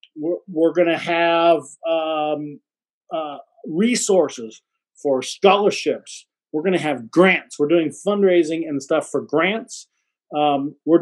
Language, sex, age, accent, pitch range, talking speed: English, male, 50-69, American, 155-195 Hz, 130 wpm